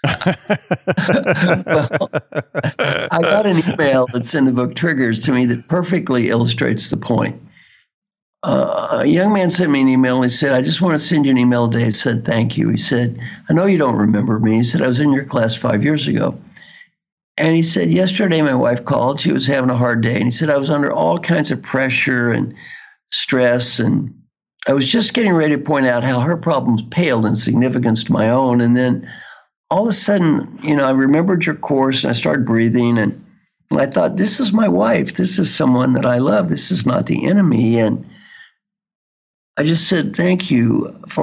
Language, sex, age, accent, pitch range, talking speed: English, male, 60-79, American, 125-180 Hz, 205 wpm